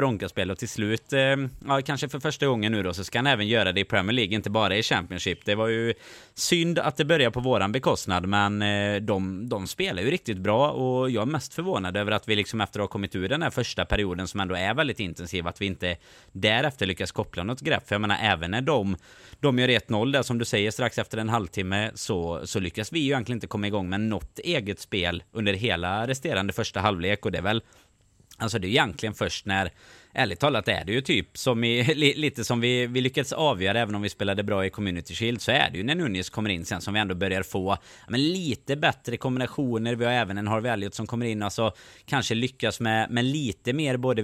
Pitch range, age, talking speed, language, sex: 95-125 Hz, 30-49, 240 wpm, Swedish, male